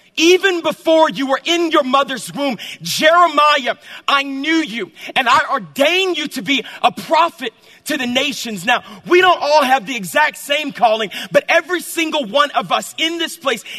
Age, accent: 40-59, American